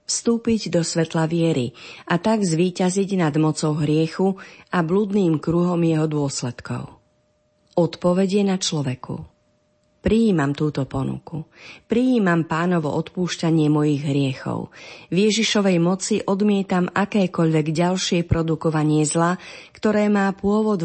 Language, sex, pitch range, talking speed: Slovak, female, 150-190 Hz, 105 wpm